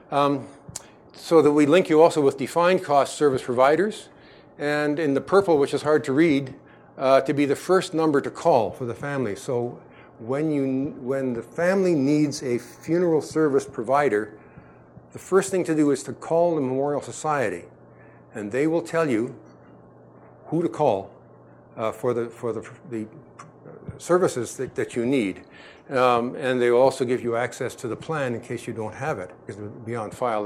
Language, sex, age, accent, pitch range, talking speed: English, male, 50-69, American, 120-155 Hz, 185 wpm